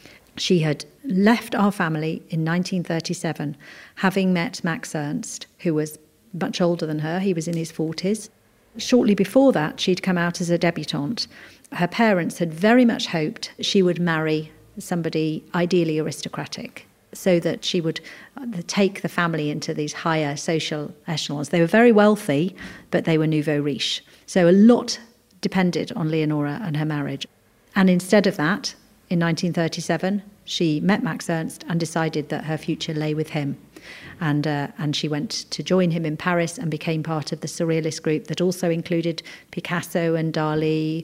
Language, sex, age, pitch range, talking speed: English, female, 40-59, 160-200 Hz, 165 wpm